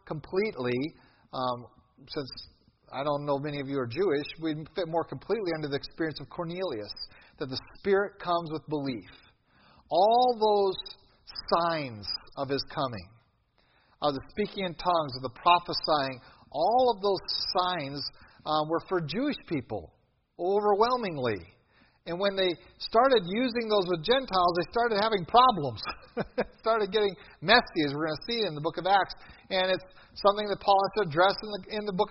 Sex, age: male, 40-59